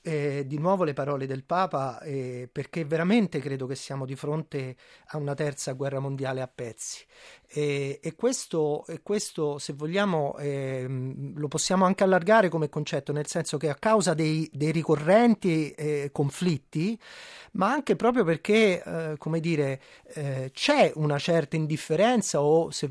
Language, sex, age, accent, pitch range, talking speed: Italian, male, 30-49, native, 140-180 Hz, 155 wpm